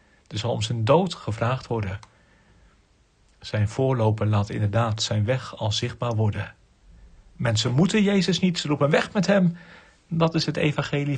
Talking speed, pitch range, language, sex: 155 wpm, 100-135 Hz, Dutch, male